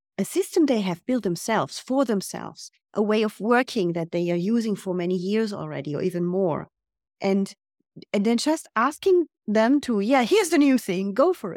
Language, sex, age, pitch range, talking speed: English, female, 30-49, 185-255 Hz, 190 wpm